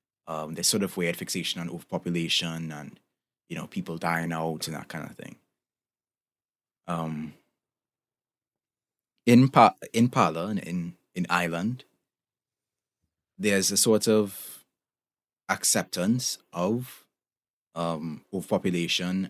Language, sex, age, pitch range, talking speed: English, male, 20-39, 80-100 Hz, 110 wpm